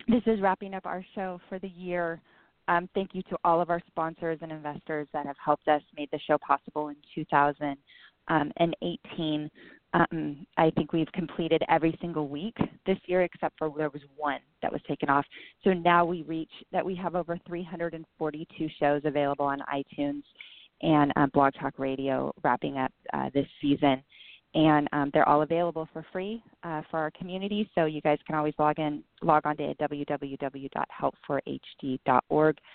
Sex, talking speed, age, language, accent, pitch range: female, 170 wpm, 20-39, English, American, 145-170 Hz